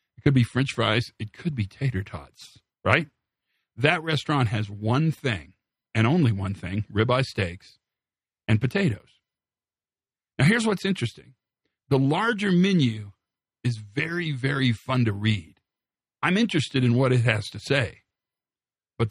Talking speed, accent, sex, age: 145 wpm, American, male, 50-69